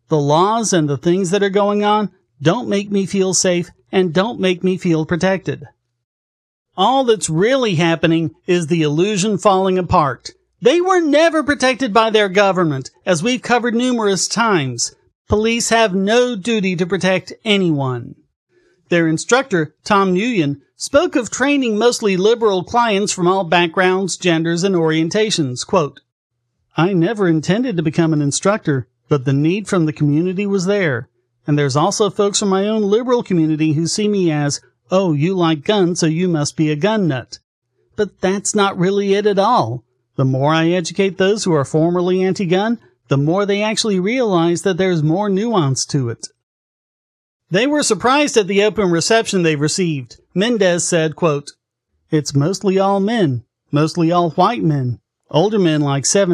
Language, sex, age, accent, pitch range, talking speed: English, male, 40-59, American, 155-205 Hz, 165 wpm